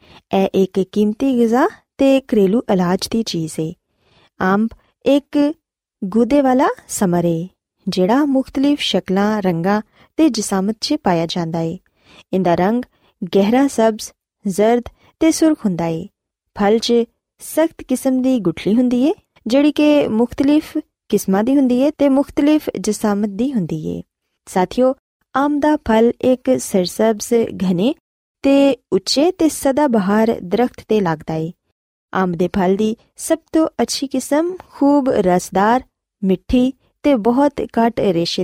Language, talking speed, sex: Punjabi, 135 wpm, female